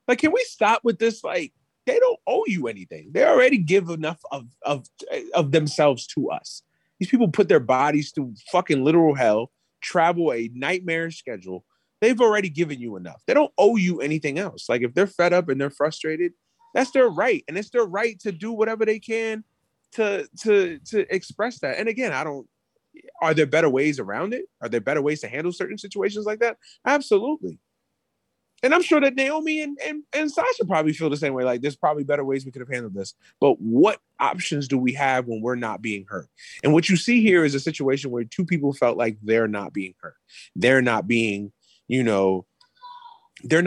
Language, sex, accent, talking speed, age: English, male, American, 205 wpm, 30-49